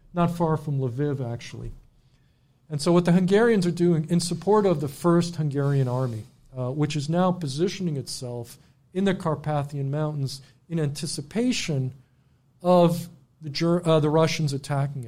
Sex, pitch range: male, 135-165 Hz